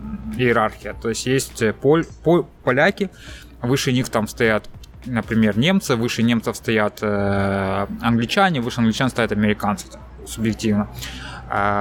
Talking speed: 100 wpm